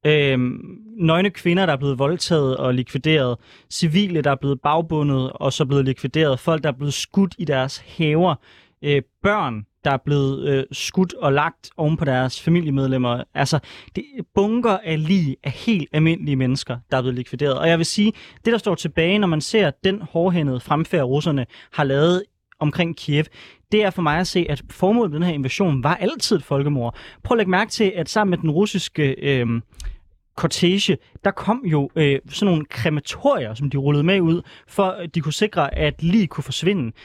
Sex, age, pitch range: male, 30-49, 140-190 Hz